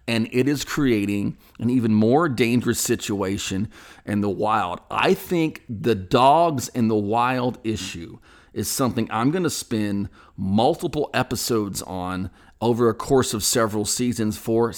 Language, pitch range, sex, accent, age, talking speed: English, 105-125 Hz, male, American, 40-59, 145 wpm